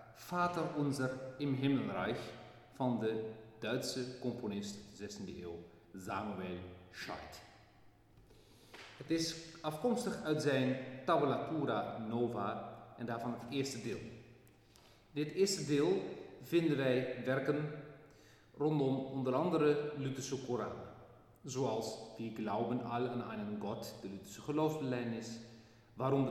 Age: 40-59